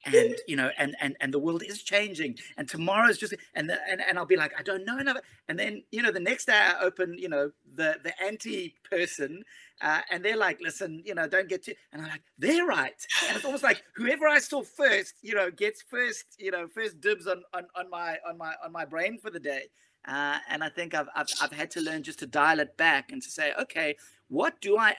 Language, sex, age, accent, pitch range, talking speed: English, male, 30-49, British, 160-265 Hz, 250 wpm